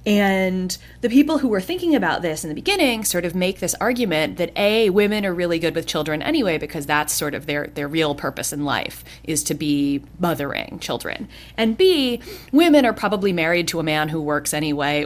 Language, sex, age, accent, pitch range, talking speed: English, female, 30-49, American, 155-200 Hz, 205 wpm